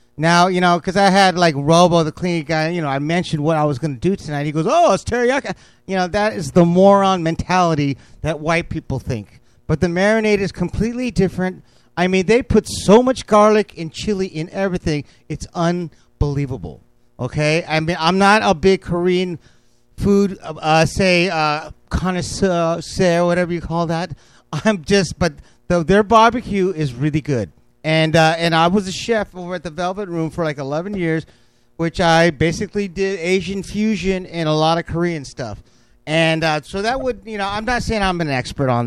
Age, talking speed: 40-59, 195 wpm